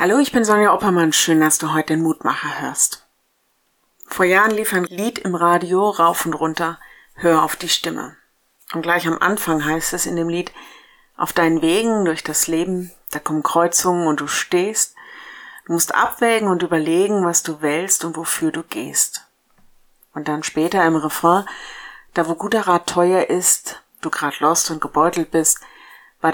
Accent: German